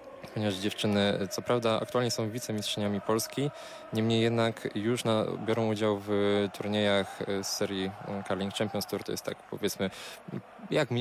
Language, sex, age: Polish, male, 20-39